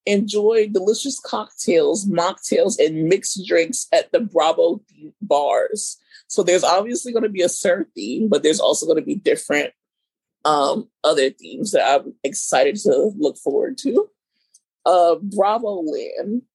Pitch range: 190-295 Hz